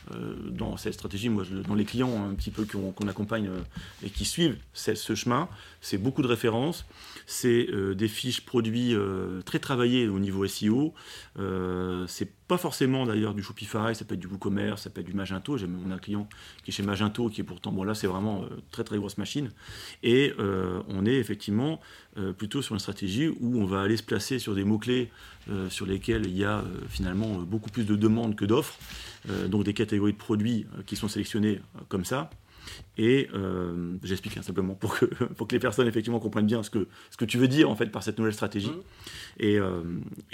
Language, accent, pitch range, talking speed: French, French, 100-115 Hz, 225 wpm